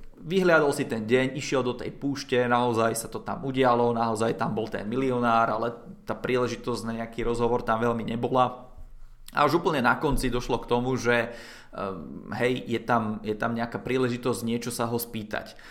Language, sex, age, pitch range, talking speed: Czech, male, 20-39, 120-145 Hz, 180 wpm